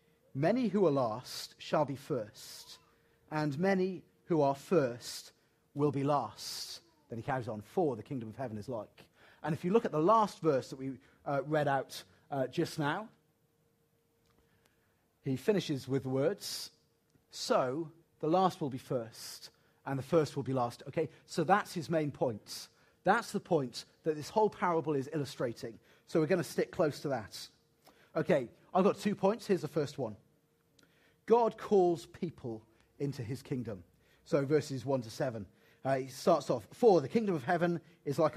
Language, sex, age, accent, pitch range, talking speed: English, male, 40-59, British, 135-175 Hz, 175 wpm